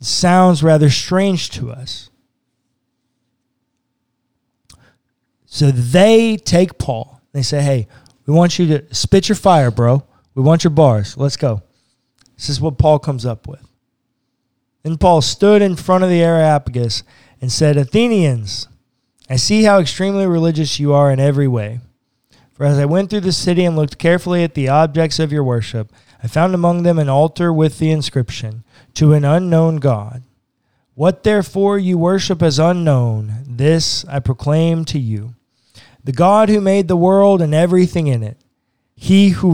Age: 20-39